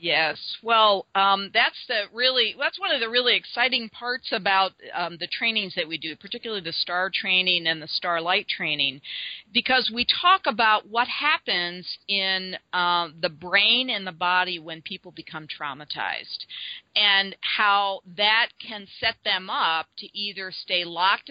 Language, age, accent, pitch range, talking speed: English, 50-69, American, 170-210 Hz, 160 wpm